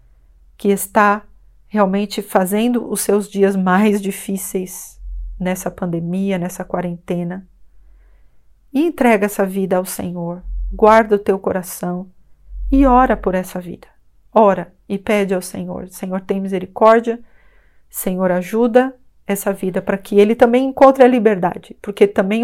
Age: 40-59